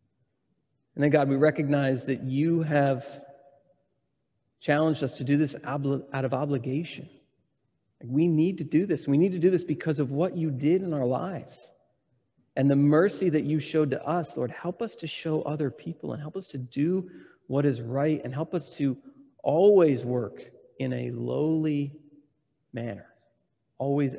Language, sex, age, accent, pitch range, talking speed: English, male, 40-59, American, 130-160 Hz, 170 wpm